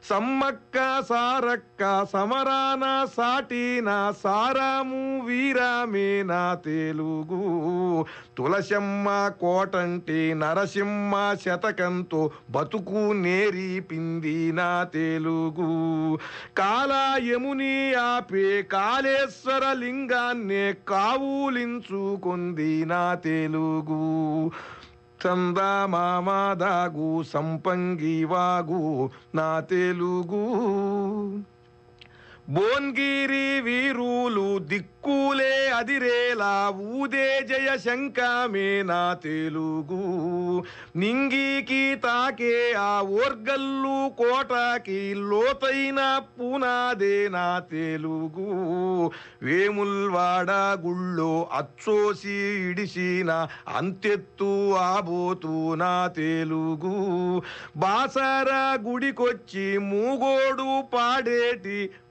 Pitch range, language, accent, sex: 175-245 Hz, Telugu, native, male